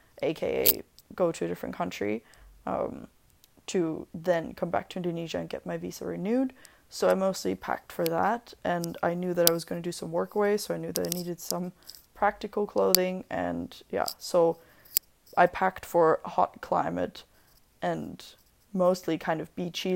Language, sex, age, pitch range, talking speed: English, female, 20-39, 165-185 Hz, 175 wpm